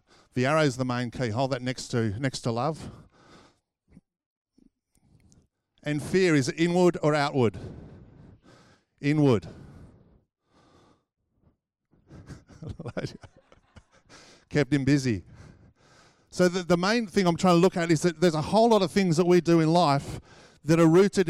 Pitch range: 140-175 Hz